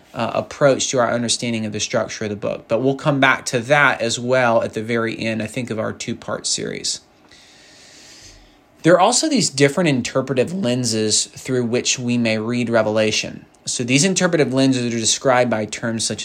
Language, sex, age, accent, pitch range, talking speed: English, male, 20-39, American, 115-140 Hz, 190 wpm